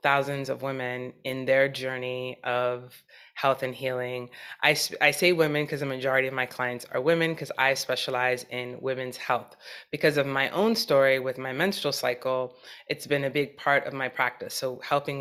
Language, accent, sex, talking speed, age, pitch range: English, American, female, 185 wpm, 20-39, 130-160 Hz